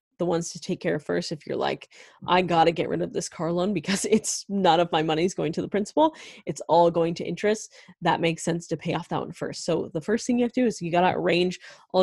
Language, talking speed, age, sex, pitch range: English, 290 wpm, 20-39, female, 170-190 Hz